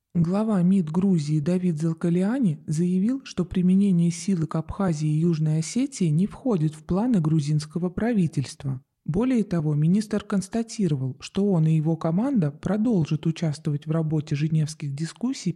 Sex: male